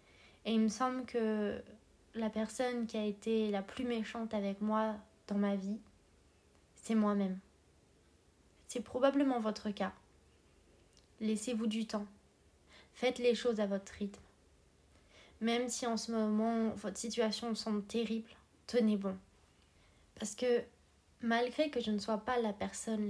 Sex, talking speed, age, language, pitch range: female, 140 wpm, 20-39, French, 200-240 Hz